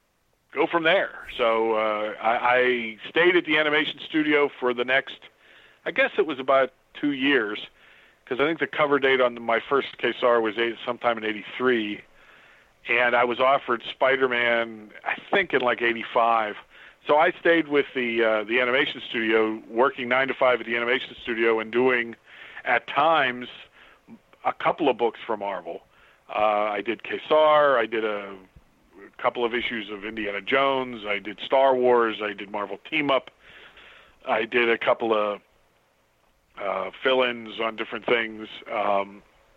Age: 40-59